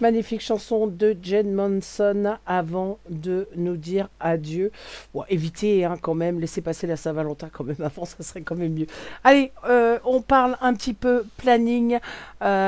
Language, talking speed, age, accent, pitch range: French, 175 wpm, 50-69, French, 180-230 Hz